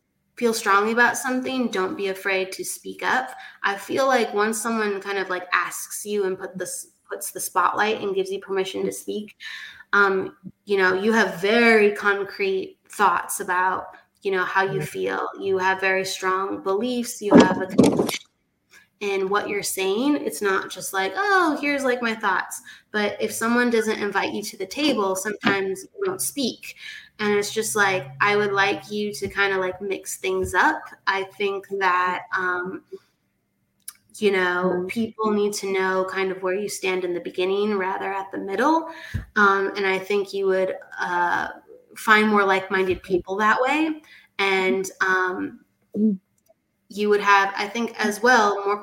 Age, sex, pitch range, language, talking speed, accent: 20-39, female, 190-225 Hz, English, 170 wpm, American